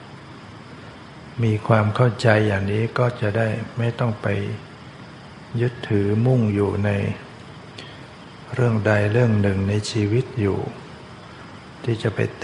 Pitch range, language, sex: 105-125 Hz, Thai, male